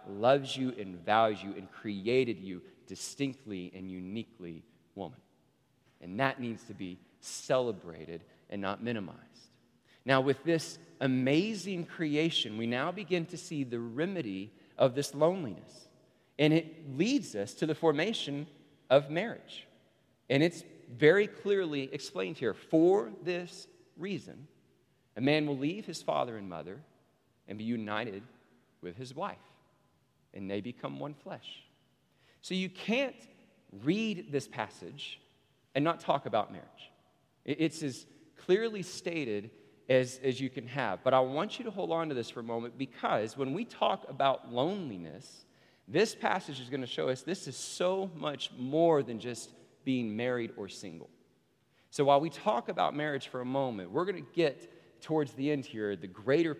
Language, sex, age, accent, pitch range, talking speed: English, male, 40-59, American, 110-160 Hz, 155 wpm